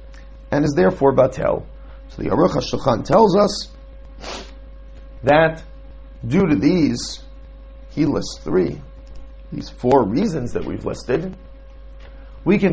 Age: 40-59